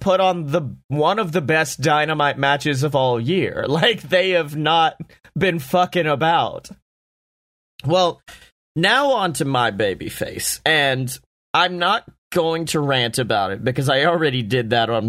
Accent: American